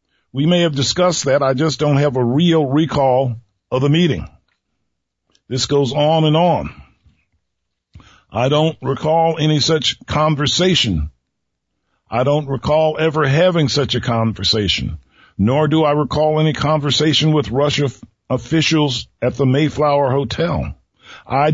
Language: English